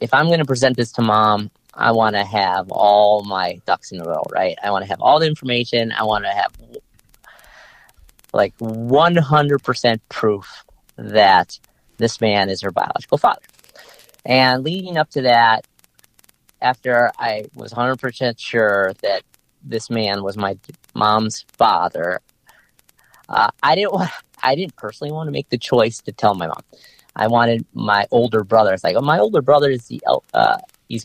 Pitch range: 105-130 Hz